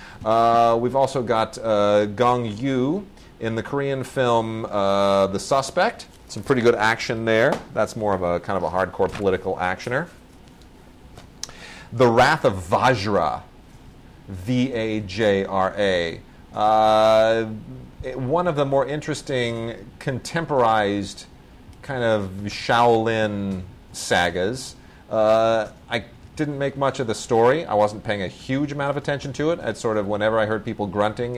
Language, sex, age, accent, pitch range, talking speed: English, male, 30-49, American, 105-125 Hz, 140 wpm